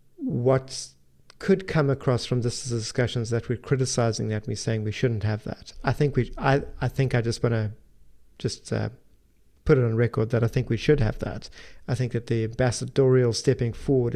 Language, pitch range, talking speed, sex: English, 115-130 Hz, 200 wpm, male